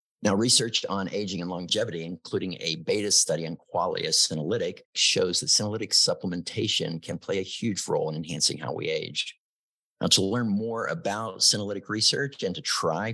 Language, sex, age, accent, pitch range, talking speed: English, male, 50-69, American, 85-120 Hz, 170 wpm